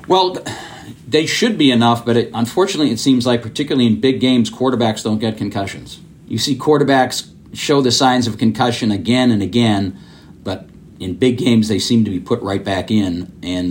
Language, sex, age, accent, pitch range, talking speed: English, male, 40-59, American, 100-125 Hz, 190 wpm